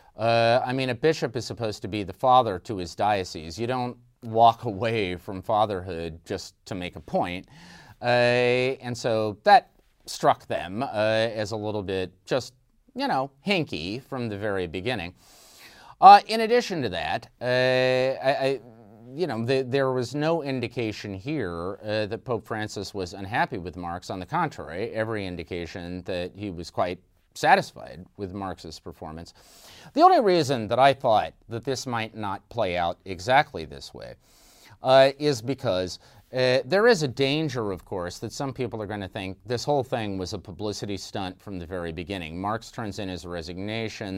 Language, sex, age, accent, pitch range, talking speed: English, male, 30-49, American, 95-130 Hz, 170 wpm